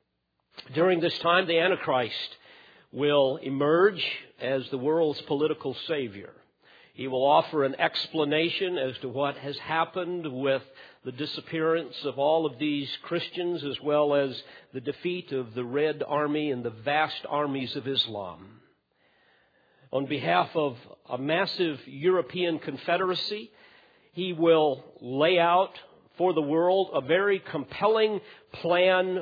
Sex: male